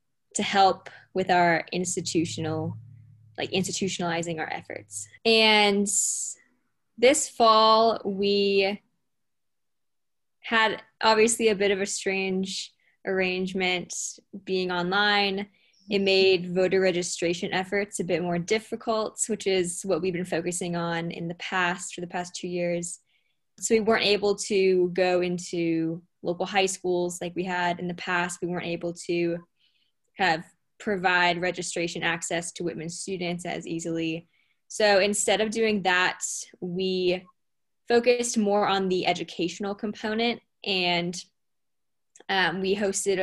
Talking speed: 130 wpm